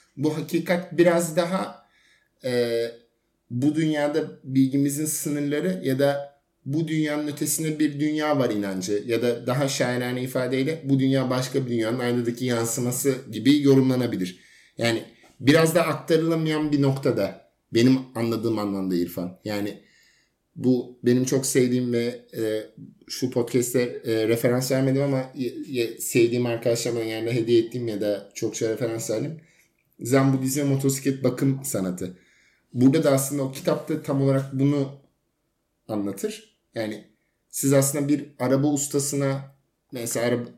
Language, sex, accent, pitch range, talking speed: Turkish, male, native, 120-150 Hz, 135 wpm